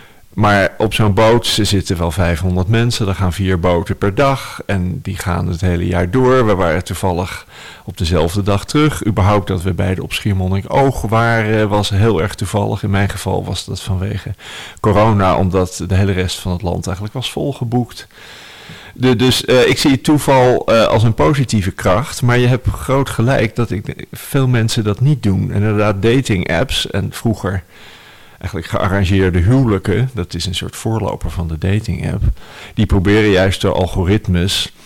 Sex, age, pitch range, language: male, 50-69, 95-115 Hz, Dutch